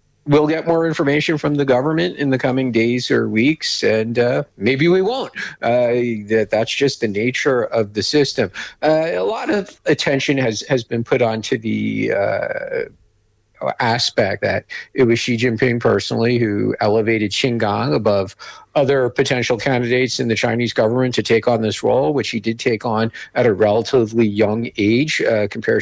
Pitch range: 115-155 Hz